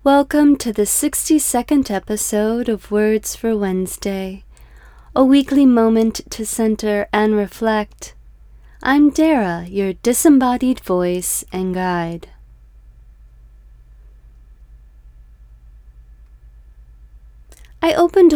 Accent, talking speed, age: American, 80 wpm, 30-49